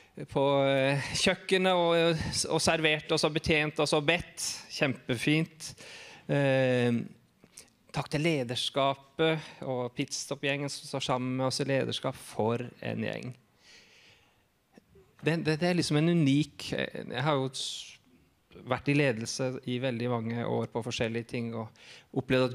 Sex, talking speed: male, 120 wpm